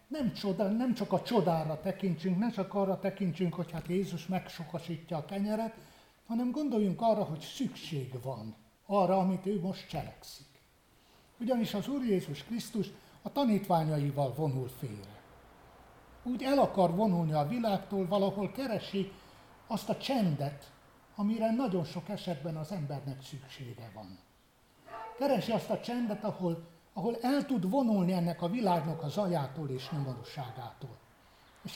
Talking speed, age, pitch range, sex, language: 135 wpm, 60-79, 165-215 Hz, male, Hungarian